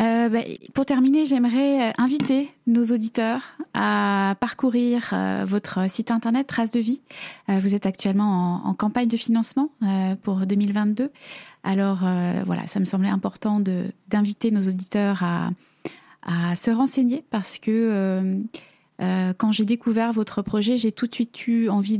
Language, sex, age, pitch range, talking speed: French, female, 20-39, 185-230 Hz, 160 wpm